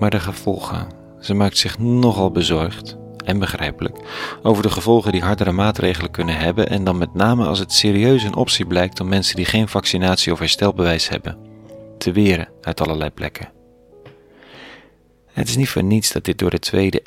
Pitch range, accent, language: 85-105 Hz, Dutch, Dutch